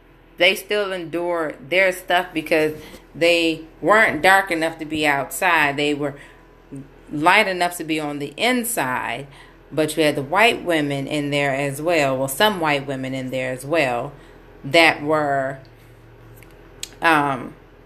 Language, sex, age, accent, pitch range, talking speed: English, female, 30-49, American, 145-175 Hz, 145 wpm